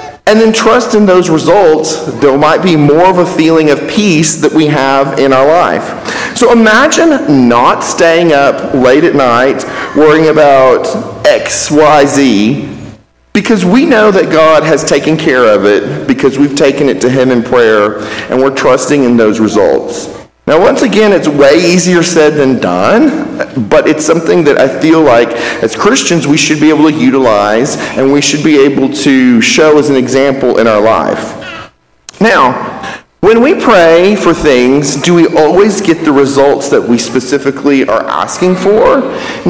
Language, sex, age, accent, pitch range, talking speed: English, male, 50-69, American, 135-170 Hz, 175 wpm